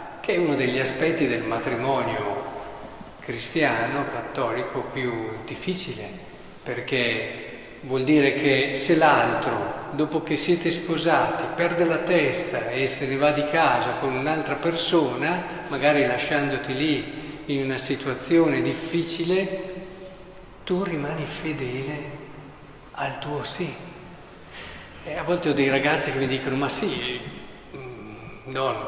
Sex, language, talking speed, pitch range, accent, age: male, Italian, 120 wpm, 135-180 Hz, native, 50-69